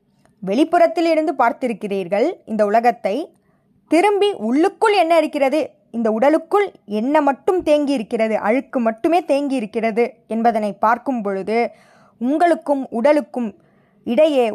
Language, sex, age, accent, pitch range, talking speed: Tamil, female, 20-39, native, 220-300 Hz, 95 wpm